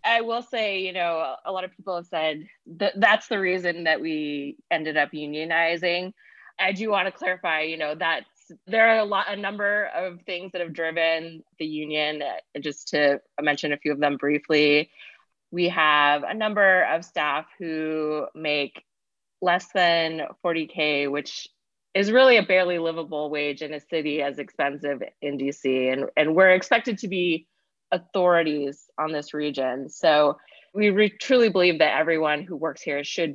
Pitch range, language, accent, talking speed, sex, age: 150-180 Hz, English, American, 170 wpm, female, 20-39